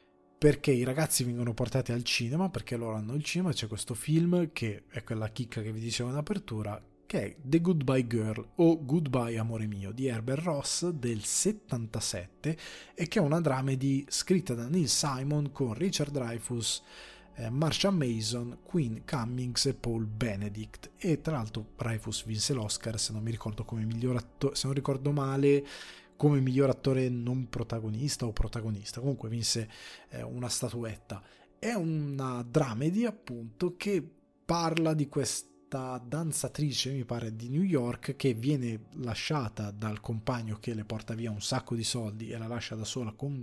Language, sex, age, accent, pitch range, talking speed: Italian, male, 20-39, native, 110-145 Hz, 165 wpm